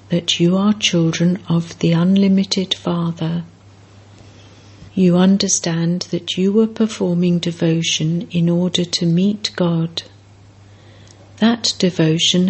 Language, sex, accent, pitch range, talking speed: English, female, British, 155-185 Hz, 105 wpm